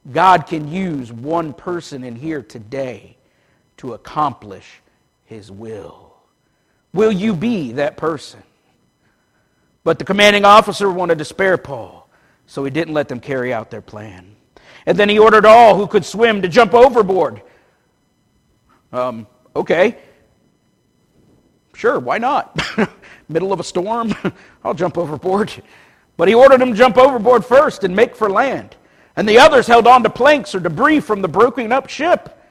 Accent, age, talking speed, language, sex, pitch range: American, 50-69, 155 wpm, English, male, 180-255 Hz